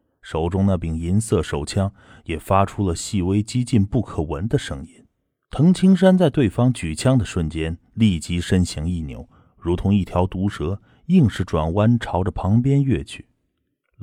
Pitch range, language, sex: 85-110 Hz, Chinese, male